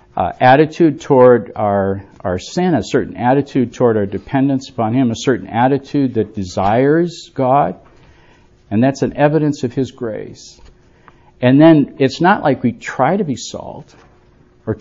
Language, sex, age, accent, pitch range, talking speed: English, male, 50-69, American, 110-140 Hz, 155 wpm